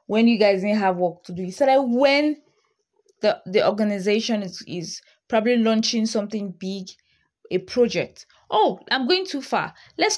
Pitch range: 185-240 Hz